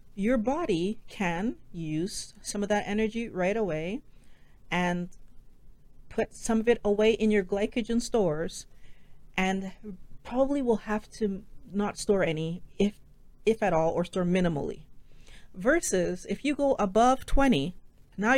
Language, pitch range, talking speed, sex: English, 180-235 Hz, 135 wpm, female